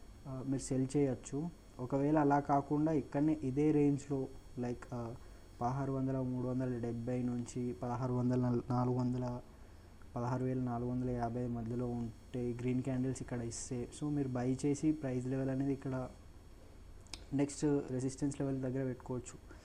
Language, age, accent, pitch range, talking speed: Telugu, 20-39, native, 120-140 Hz, 135 wpm